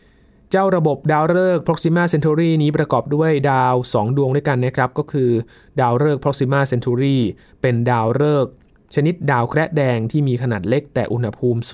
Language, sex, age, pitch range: Thai, male, 20-39, 120-150 Hz